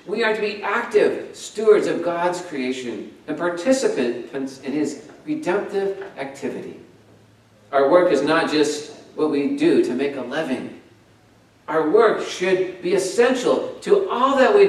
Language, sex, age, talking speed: English, male, 50-69, 145 wpm